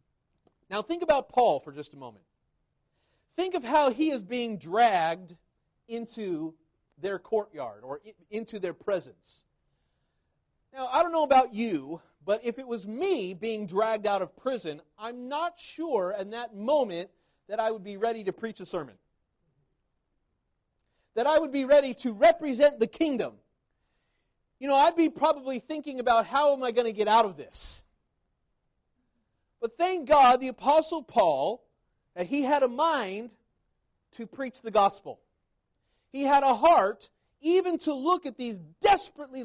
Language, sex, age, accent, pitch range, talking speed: English, male, 40-59, American, 205-295 Hz, 155 wpm